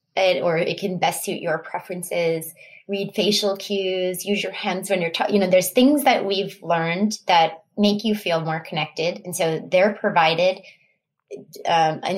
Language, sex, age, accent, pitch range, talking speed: English, female, 20-39, American, 160-205 Hz, 170 wpm